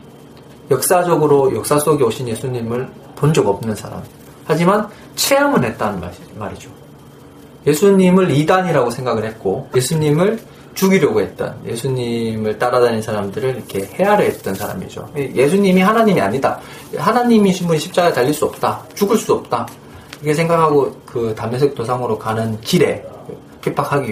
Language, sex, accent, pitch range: Korean, male, native, 120-185 Hz